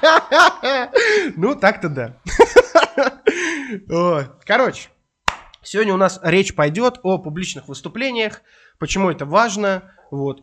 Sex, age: male, 20-39